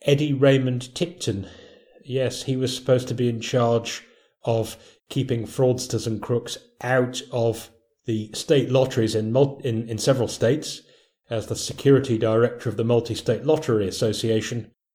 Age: 30-49